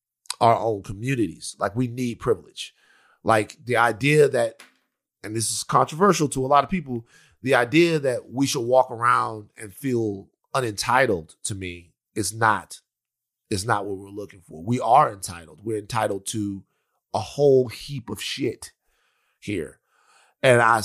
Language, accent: English, American